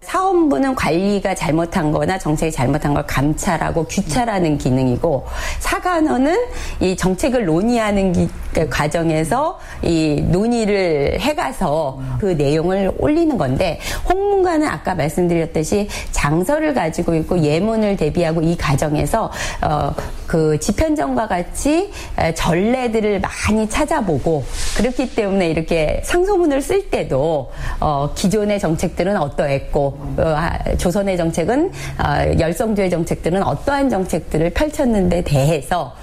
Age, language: 40-59, Korean